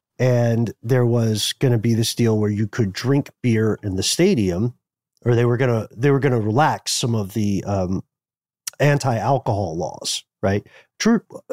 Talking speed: 175 wpm